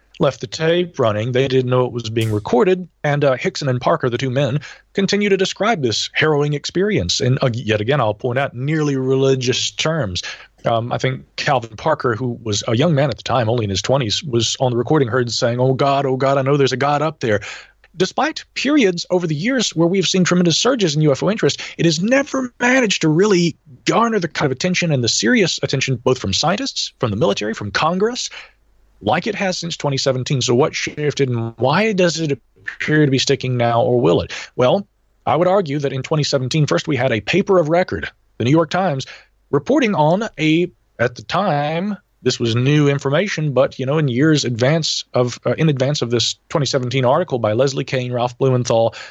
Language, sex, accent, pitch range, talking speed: English, male, American, 120-165 Hz, 210 wpm